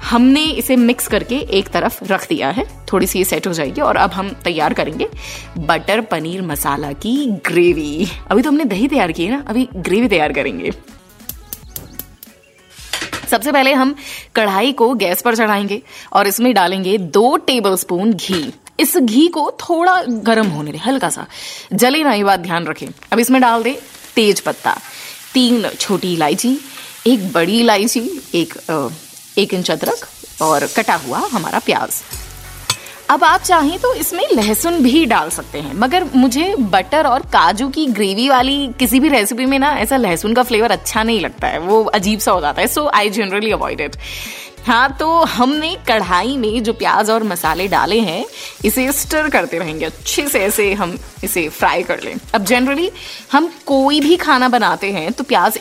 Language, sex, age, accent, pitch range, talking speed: Hindi, female, 20-39, native, 200-275 Hz, 170 wpm